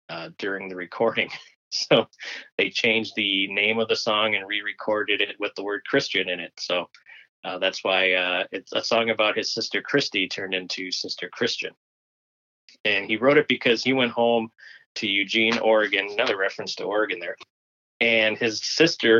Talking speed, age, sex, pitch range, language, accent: 175 wpm, 20-39, male, 95-115 Hz, English, American